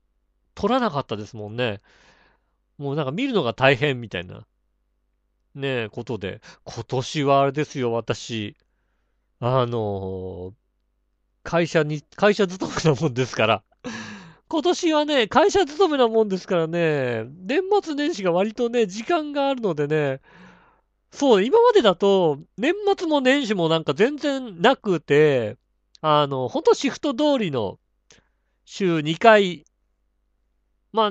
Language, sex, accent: Japanese, male, native